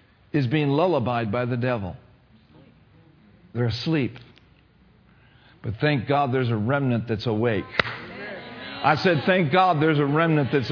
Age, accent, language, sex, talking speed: 50-69, American, English, male, 135 wpm